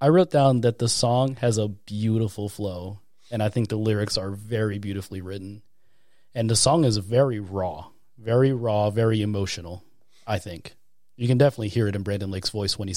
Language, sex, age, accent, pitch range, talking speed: English, male, 30-49, American, 100-120 Hz, 195 wpm